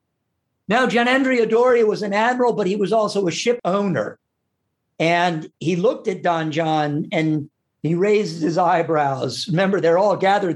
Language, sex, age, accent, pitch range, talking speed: English, male, 50-69, American, 150-195 Hz, 165 wpm